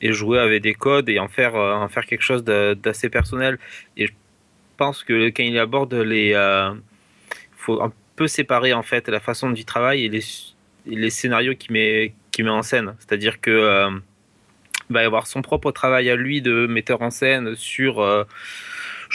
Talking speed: 195 wpm